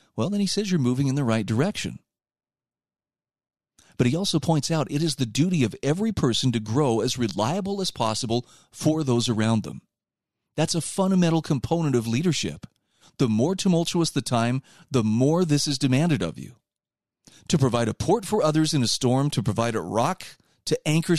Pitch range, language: 115-165 Hz, English